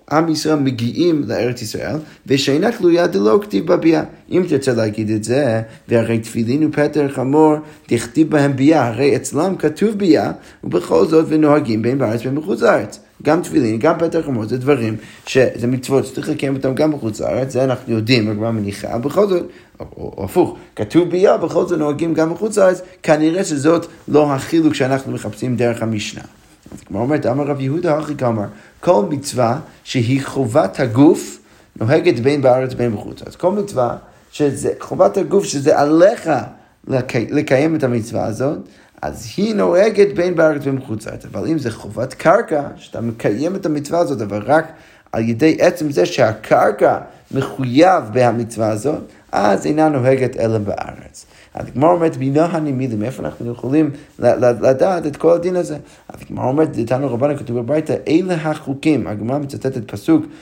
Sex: male